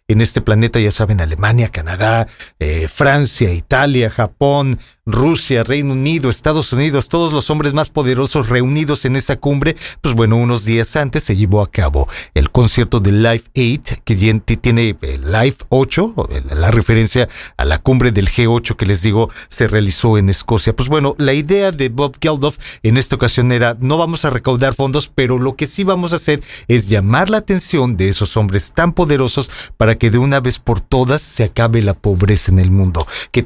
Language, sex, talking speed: English, male, 190 wpm